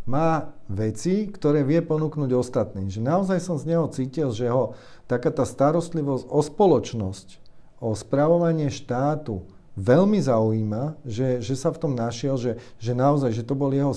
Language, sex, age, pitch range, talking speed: Slovak, male, 40-59, 115-140 Hz, 155 wpm